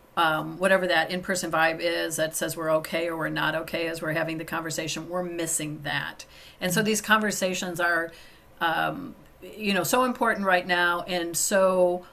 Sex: female